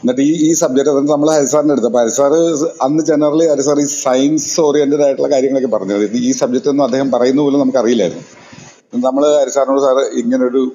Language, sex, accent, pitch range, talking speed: Malayalam, male, native, 120-150 Hz, 160 wpm